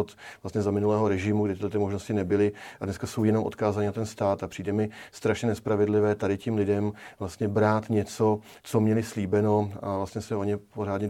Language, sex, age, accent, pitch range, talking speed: Czech, male, 40-59, native, 100-110 Hz, 195 wpm